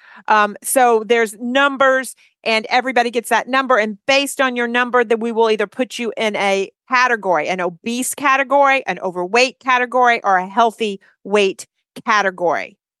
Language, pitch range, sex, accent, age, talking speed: English, 215-255 Hz, female, American, 40-59, 155 wpm